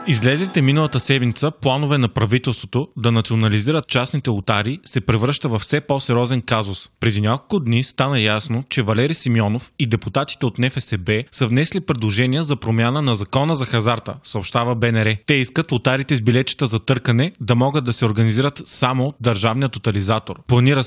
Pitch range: 115-140 Hz